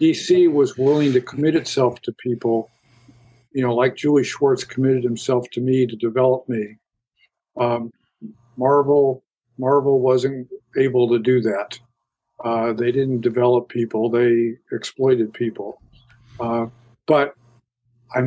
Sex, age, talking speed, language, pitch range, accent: male, 50-69, 130 wpm, English, 120-130 Hz, American